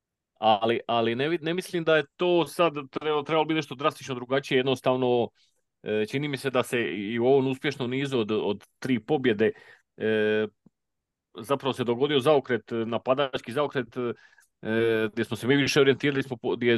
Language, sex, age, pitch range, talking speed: Croatian, male, 30-49, 110-145 Hz, 170 wpm